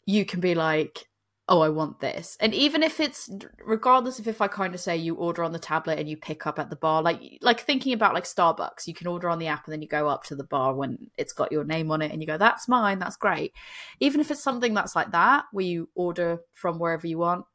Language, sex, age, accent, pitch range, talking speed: English, female, 20-39, British, 155-205 Hz, 270 wpm